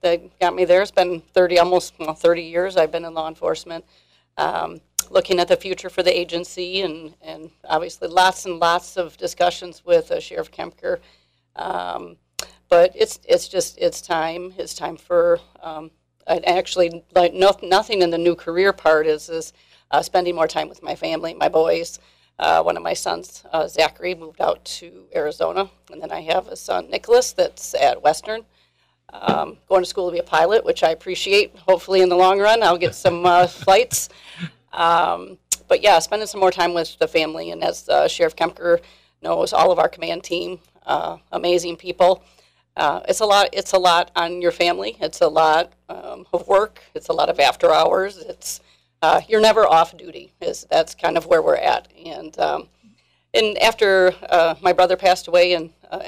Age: 40-59